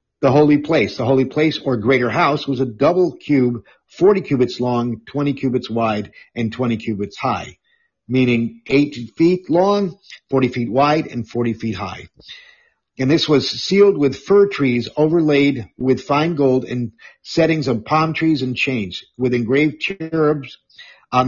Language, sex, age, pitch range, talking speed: English, male, 50-69, 120-150 Hz, 160 wpm